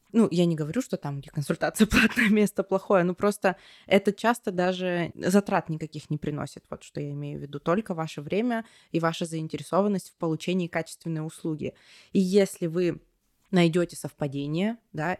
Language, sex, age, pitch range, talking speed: Russian, female, 20-39, 155-195 Hz, 165 wpm